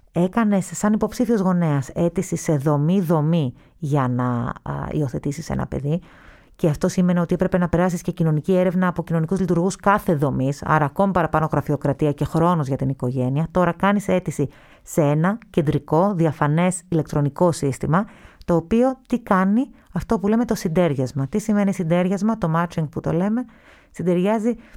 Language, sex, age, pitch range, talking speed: Greek, female, 30-49, 145-185 Hz, 155 wpm